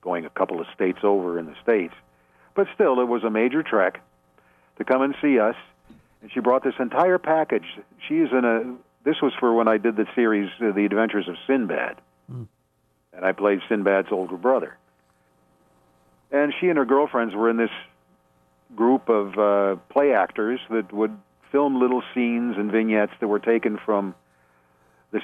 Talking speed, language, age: 175 wpm, English, 50-69